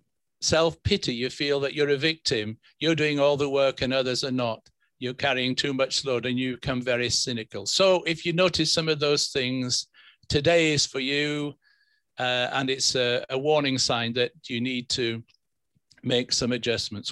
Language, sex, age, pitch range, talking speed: English, male, 50-69, 125-155 Hz, 180 wpm